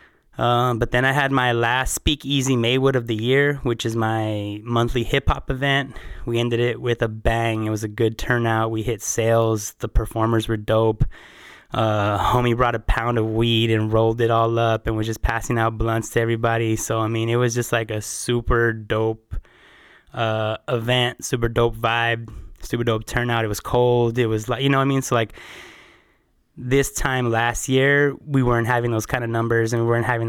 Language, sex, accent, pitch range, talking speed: English, male, American, 110-125 Hz, 205 wpm